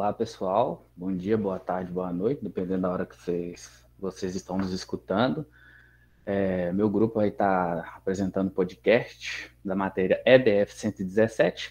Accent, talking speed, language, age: Brazilian, 145 wpm, Portuguese, 20-39